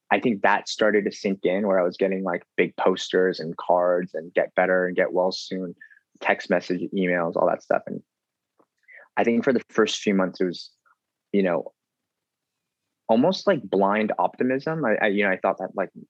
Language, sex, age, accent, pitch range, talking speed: English, male, 20-39, American, 90-100 Hz, 200 wpm